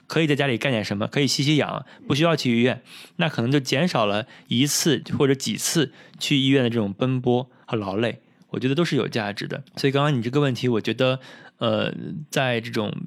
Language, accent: Chinese, native